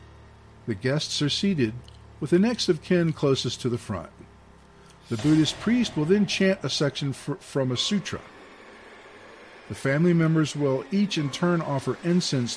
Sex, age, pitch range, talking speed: male, 50-69, 120-170 Hz, 160 wpm